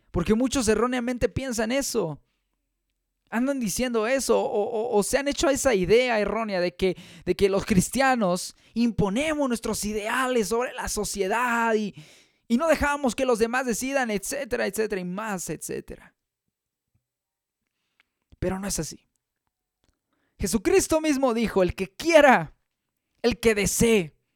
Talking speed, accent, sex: 135 wpm, Mexican, male